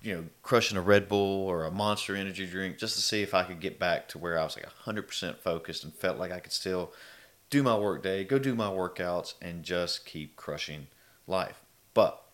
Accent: American